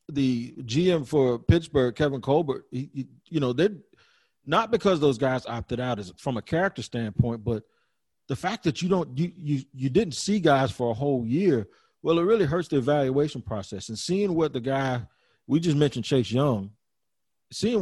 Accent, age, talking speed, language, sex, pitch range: American, 40-59, 190 wpm, English, male, 125-160 Hz